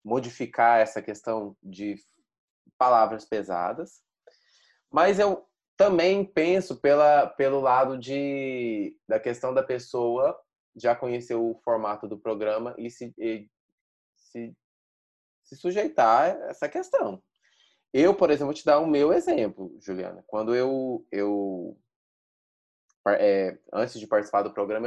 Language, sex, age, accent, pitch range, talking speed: Portuguese, male, 20-39, Brazilian, 105-130 Hz, 125 wpm